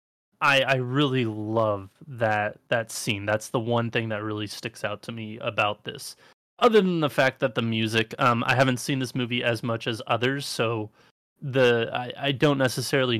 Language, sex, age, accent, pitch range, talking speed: English, male, 20-39, American, 110-135 Hz, 190 wpm